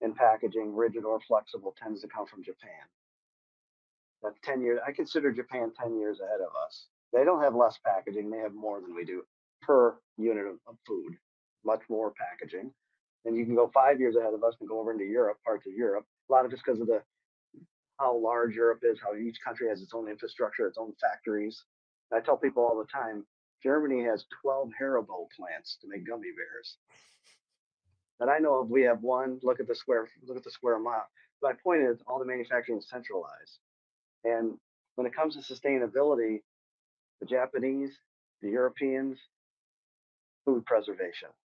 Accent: American